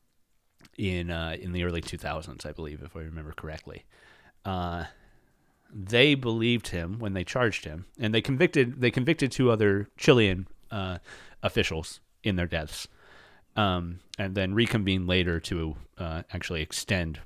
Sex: male